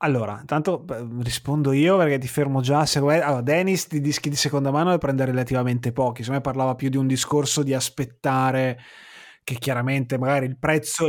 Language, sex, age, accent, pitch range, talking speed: Italian, male, 30-49, native, 120-155 Hz, 180 wpm